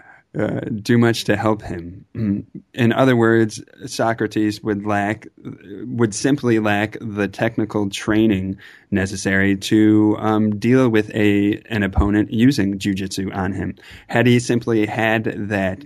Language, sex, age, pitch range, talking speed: English, male, 20-39, 100-115 Hz, 130 wpm